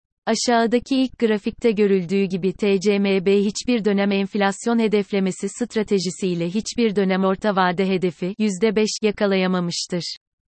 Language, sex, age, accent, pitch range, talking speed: Turkish, female, 30-49, native, 190-220 Hz, 105 wpm